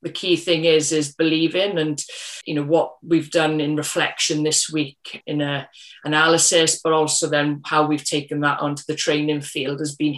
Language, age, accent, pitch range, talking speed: English, 30-49, British, 150-160 Hz, 185 wpm